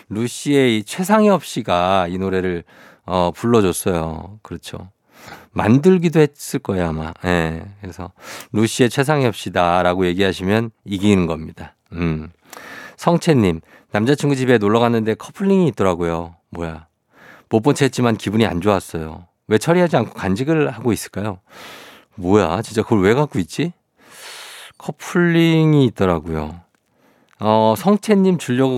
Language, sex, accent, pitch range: Korean, male, native, 90-135 Hz